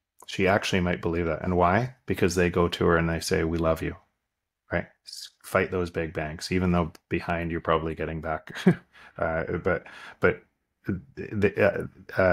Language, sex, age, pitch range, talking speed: English, male, 30-49, 90-100 Hz, 165 wpm